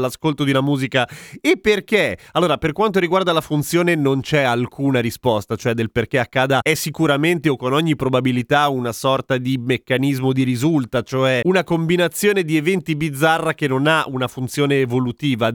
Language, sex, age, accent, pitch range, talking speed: Italian, male, 30-49, native, 135-185 Hz, 170 wpm